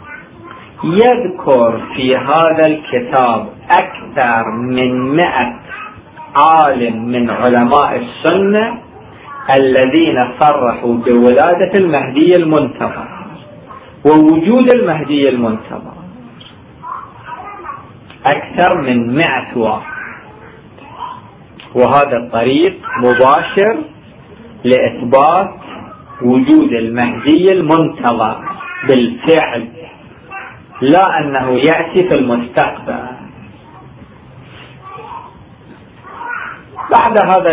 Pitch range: 120-180 Hz